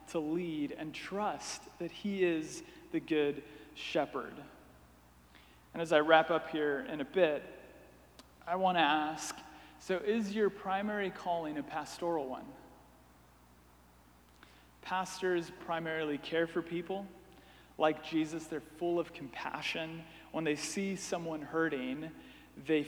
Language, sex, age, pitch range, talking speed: English, male, 30-49, 150-175 Hz, 125 wpm